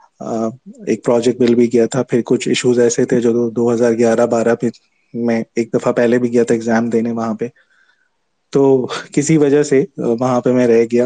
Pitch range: 115-130 Hz